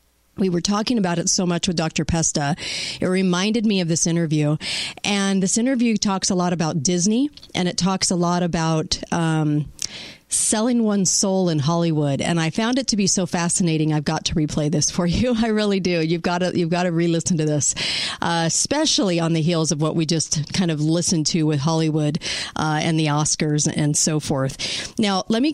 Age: 40-59